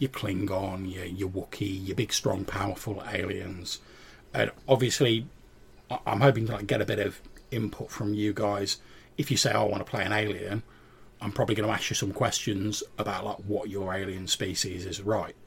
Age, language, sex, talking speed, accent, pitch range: 30-49, English, male, 195 wpm, British, 100-115 Hz